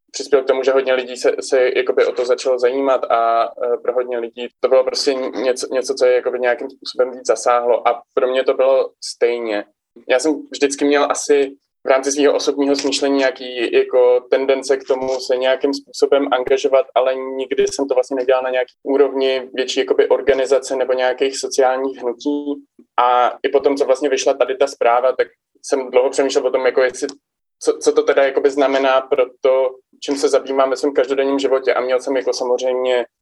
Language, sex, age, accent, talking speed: Czech, male, 20-39, native, 190 wpm